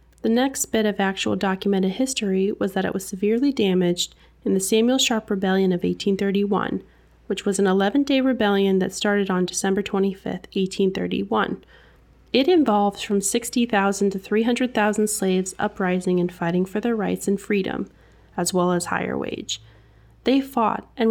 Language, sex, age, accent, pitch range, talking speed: English, female, 30-49, American, 190-235 Hz, 155 wpm